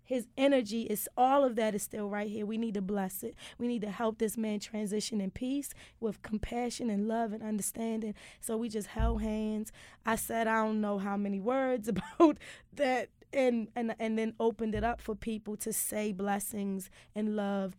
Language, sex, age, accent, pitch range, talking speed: English, female, 20-39, American, 210-240 Hz, 200 wpm